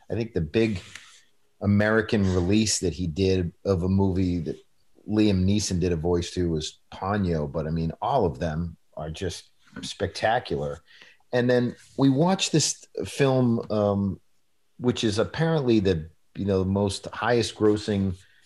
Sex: male